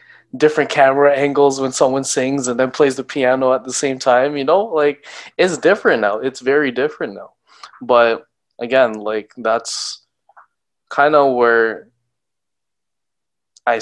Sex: male